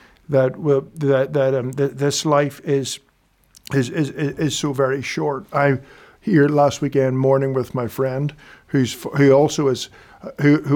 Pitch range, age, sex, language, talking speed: 120-140 Hz, 50-69, male, English, 160 wpm